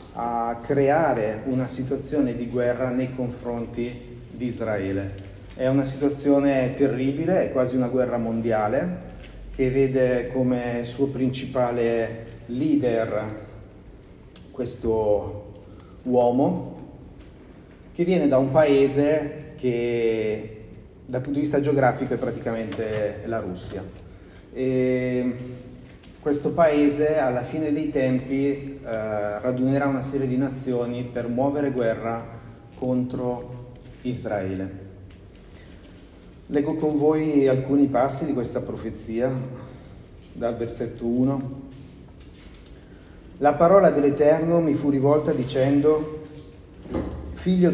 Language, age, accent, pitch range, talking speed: Italian, 30-49, native, 115-140 Hz, 100 wpm